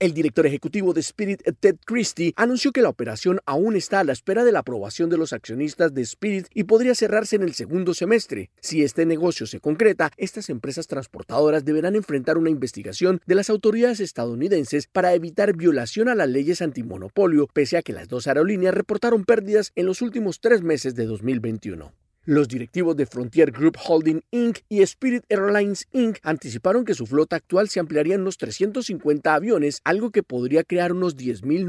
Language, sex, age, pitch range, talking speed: Spanish, male, 40-59, 140-205 Hz, 185 wpm